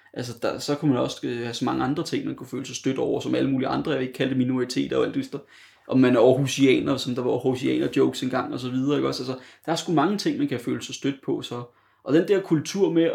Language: Danish